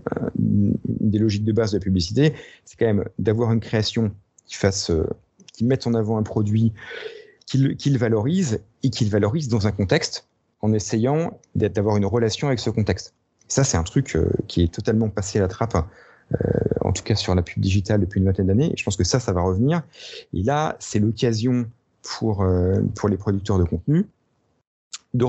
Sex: male